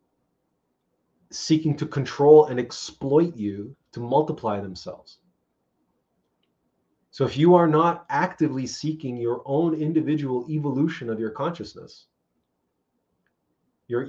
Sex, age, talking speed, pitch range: male, 30-49, 100 wpm, 110-140 Hz